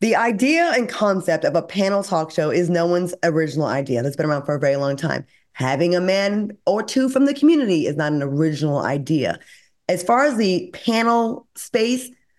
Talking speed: 200 wpm